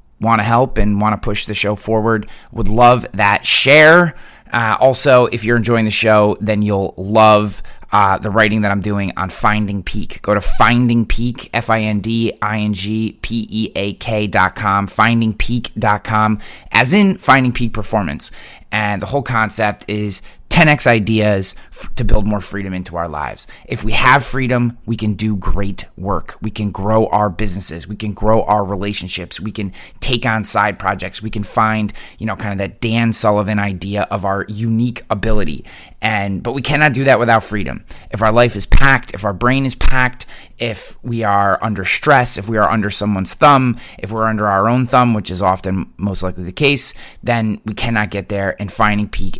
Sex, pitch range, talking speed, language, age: male, 100-115 Hz, 180 wpm, English, 20-39